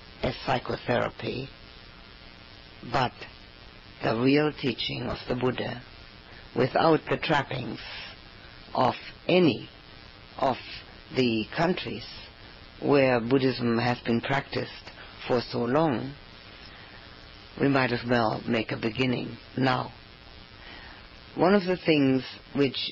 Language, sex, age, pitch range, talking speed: English, female, 60-79, 115-150 Hz, 100 wpm